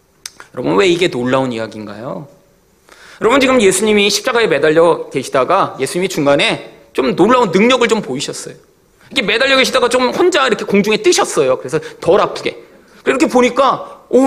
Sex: male